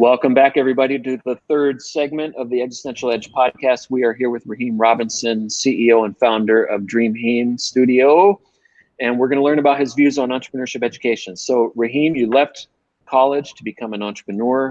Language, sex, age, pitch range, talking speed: English, male, 40-59, 110-135 Hz, 180 wpm